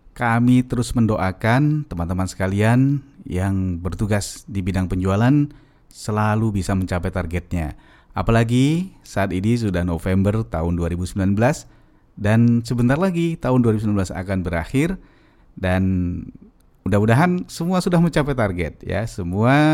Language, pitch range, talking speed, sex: Indonesian, 95-125 Hz, 110 wpm, male